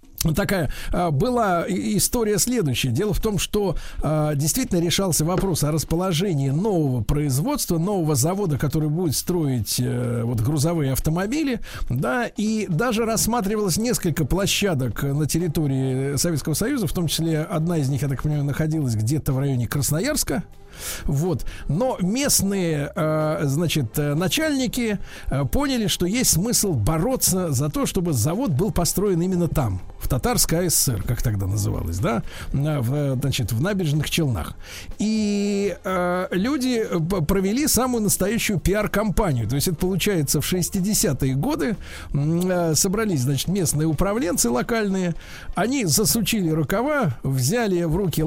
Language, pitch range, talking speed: Russian, 145-200 Hz, 125 wpm